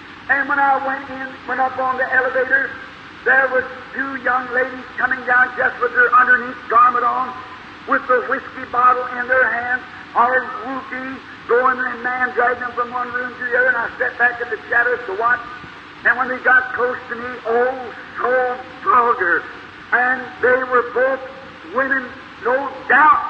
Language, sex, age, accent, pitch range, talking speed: English, male, 50-69, American, 250-265 Hz, 180 wpm